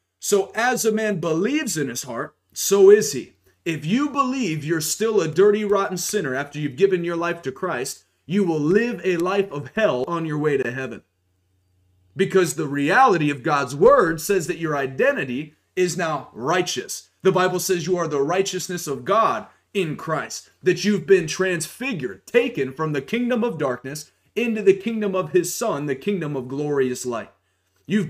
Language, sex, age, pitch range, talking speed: English, male, 30-49, 145-210 Hz, 180 wpm